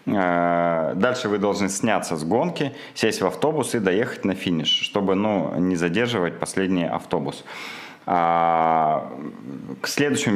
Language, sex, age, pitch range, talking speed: Russian, male, 30-49, 85-105 Hz, 120 wpm